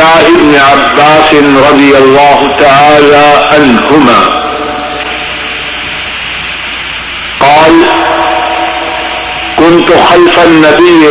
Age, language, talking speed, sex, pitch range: 60-79, Urdu, 55 wpm, male, 150-180 Hz